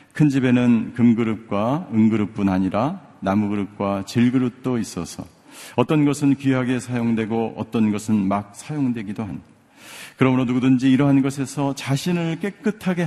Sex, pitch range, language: male, 115-180 Hz, Korean